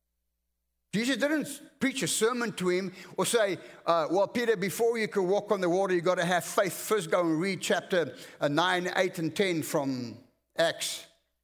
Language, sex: English, male